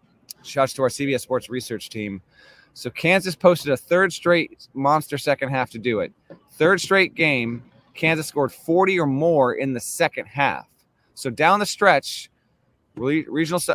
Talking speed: 155 wpm